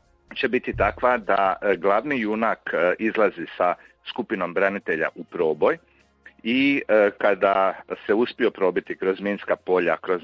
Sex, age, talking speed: male, 50-69, 125 wpm